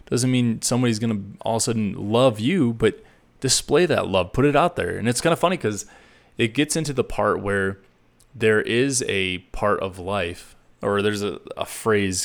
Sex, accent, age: male, American, 20-39